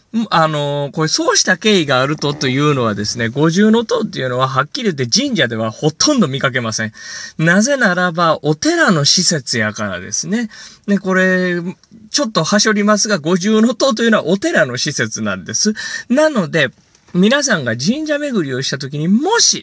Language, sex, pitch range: Japanese, male, 130-205 Hz